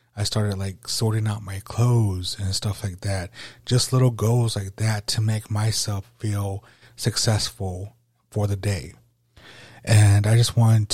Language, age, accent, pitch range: English, 30-49, American, 100-120 Hz